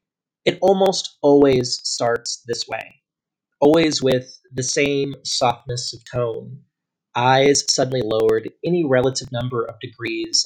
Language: English